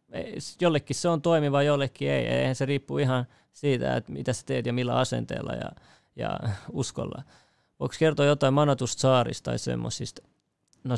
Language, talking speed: Finnish, 160 wpm